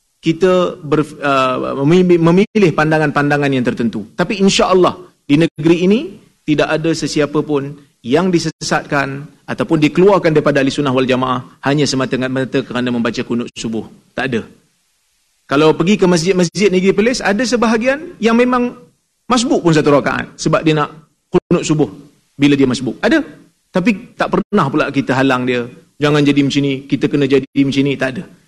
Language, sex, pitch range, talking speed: Malay, male, 145-190 Hz, 160 wpm